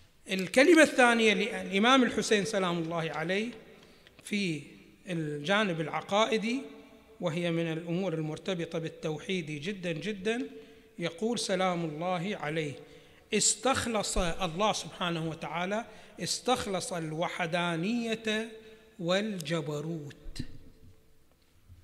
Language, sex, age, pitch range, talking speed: Arabic, male, 60-79, 160-215 Hz, 75 wpm